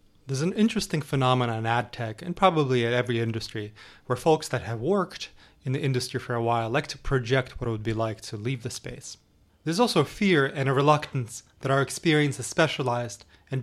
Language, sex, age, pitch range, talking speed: English, male, 30-49, 115-145 Hz, 210 wpm